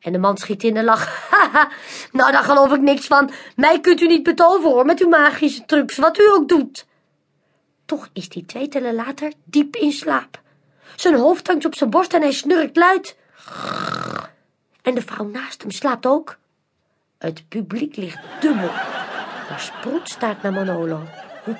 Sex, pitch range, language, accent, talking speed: female, 220-325 Hz, Dutch, Dutch, 175 wpm